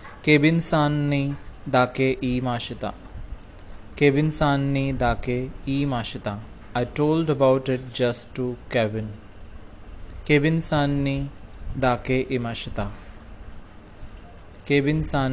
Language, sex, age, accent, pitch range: Japanese, male, 20-39, Indian, 100-135 Hz